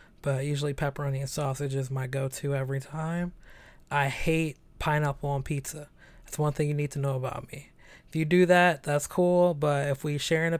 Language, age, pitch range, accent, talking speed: English, 20-39, 140-160 Hz, American, 205 wpm